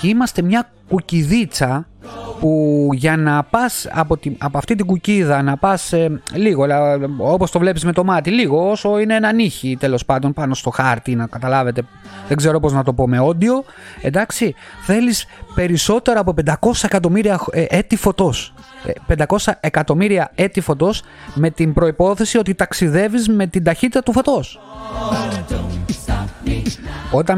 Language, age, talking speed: Greek, 30-49, 145 wpm